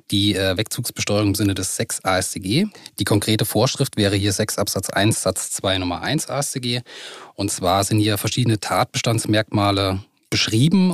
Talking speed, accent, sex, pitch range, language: 150 wpm, German, male, 100-130 Hz, German